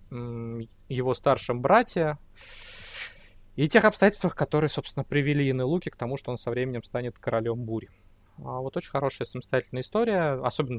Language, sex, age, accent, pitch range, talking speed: Russian, male, 20-39, native, 115-135 Hz, 150 wpm